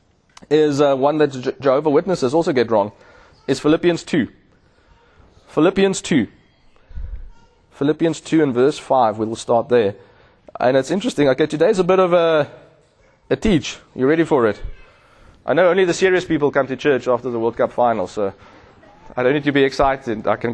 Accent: South African